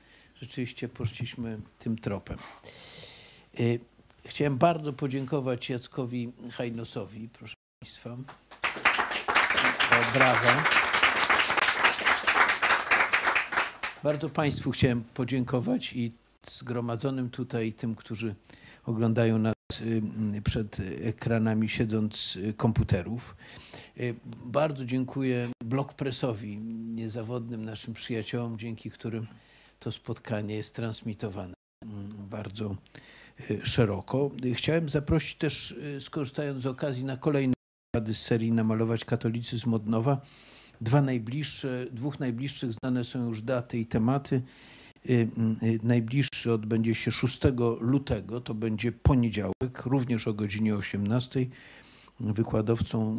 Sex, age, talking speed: male, 50-69, 90 wpm